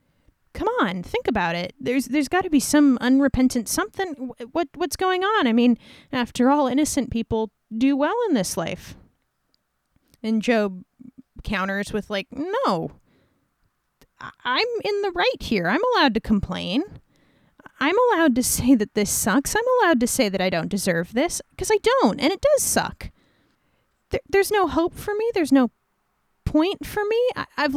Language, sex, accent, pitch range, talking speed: English, female, American, 245-360 Hz, 170 wpm